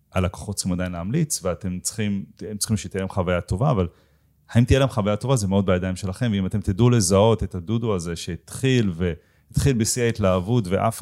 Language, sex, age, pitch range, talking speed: Hebrew, male, 30-49, 90-115 Hz, 185 wpm